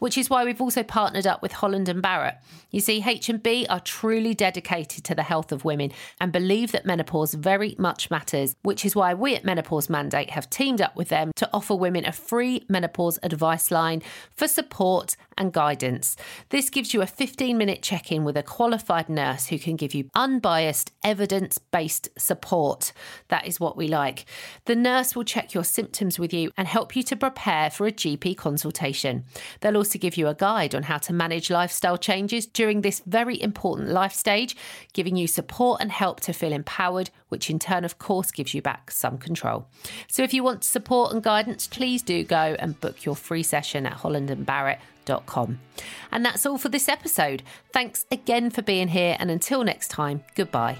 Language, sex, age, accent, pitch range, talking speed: English, female, 40-59, British, 160-225 Hz, 195 wpm